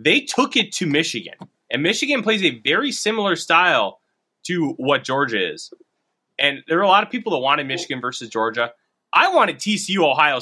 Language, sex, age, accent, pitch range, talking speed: English, male, 20-39, American, 115-190 Hz, 185 wpm